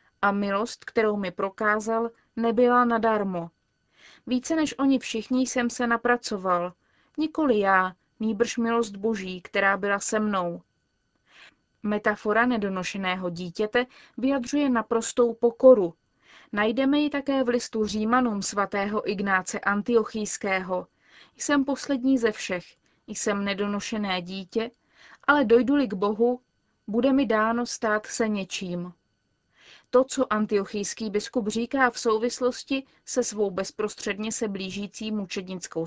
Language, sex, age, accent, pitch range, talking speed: Czech, female, 30-49, native, 200-245 Hz, 115 wpm